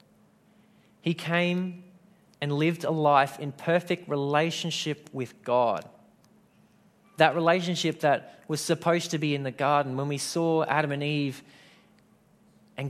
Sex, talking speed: male, 130 wpm